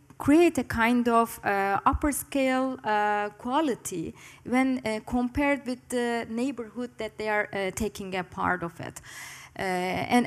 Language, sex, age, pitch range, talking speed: English, female, 20-39, 200-245 Hz, 140 wpm